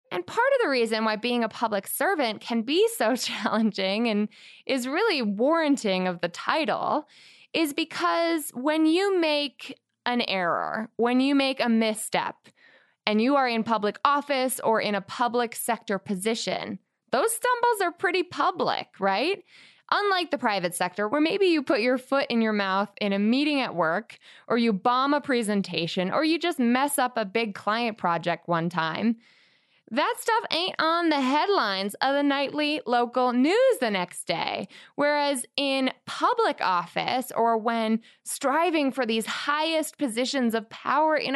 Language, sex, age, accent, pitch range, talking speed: English, female, 20-39, American, 215-300 Hz, 165 wpm